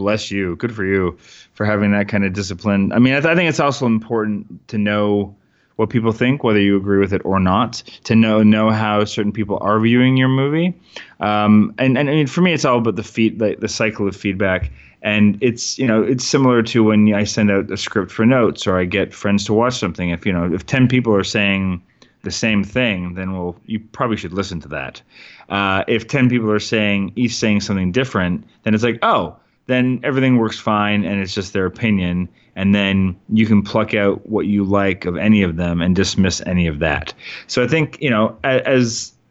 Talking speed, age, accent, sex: 225 wpm, 30-49, American, male